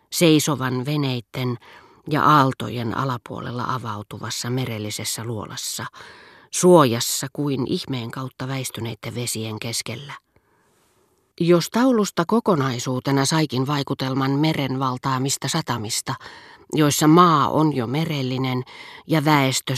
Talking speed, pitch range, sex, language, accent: 90 wpm, 125-155 Hz, female, Finnish, native